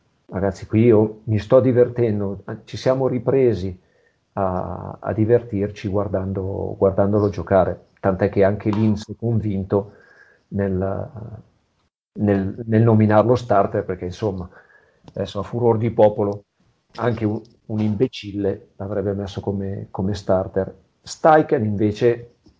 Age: 40-59